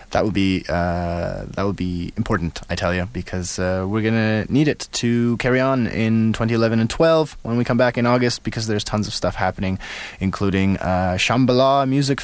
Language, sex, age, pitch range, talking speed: English, male, 20-39, 95-130 Hz, 190 wpm